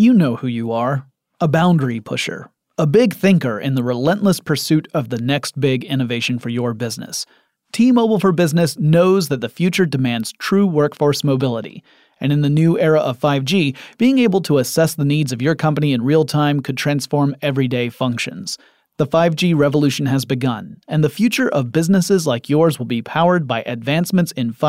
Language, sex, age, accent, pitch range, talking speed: English, male, 30-49, American, 135-180 Hz, 180 wpm